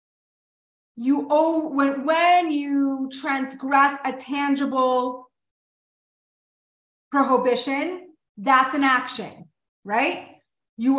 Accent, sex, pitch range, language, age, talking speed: American, female, 270-345 Hz, English, 30-49, 75 wpm